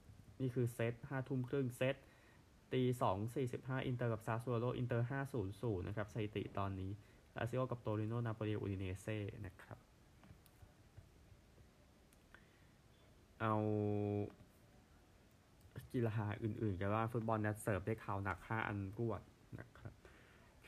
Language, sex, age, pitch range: Thai, male, 20-39, 100-120 Hz